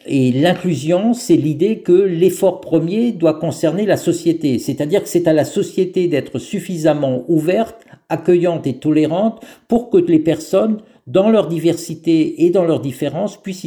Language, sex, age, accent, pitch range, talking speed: French, male, 50-69, French, 150-190 Hz, 155 wpm